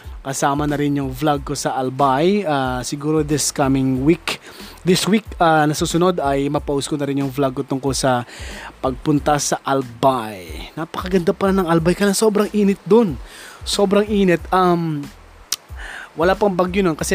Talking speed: 155 wpm